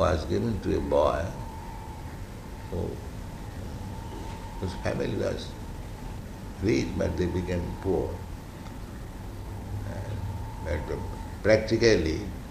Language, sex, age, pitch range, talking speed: English, male, 60-79, 85-100 Hz, 90 wpm